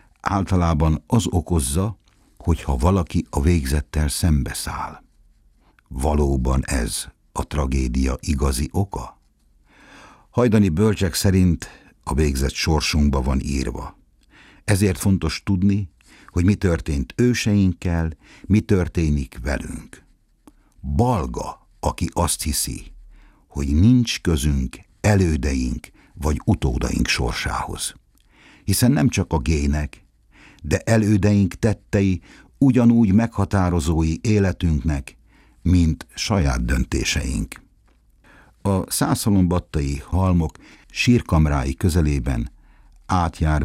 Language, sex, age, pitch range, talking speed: Hungarian, male, 60-79, 75-100 Hz, 85 wpm